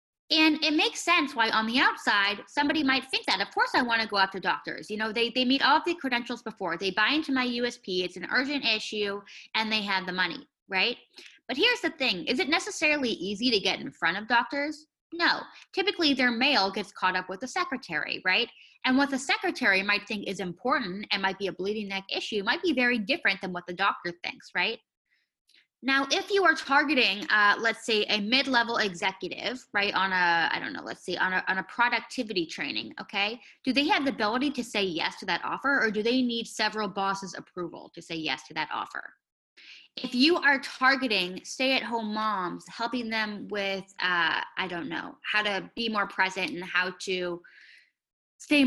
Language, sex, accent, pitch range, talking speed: English, female, American, 195-270 Hz, 205 wpm